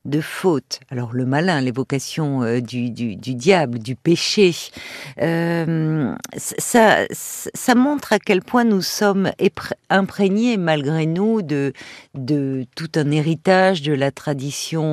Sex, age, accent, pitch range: female, 50-69, French, 145-205 Hz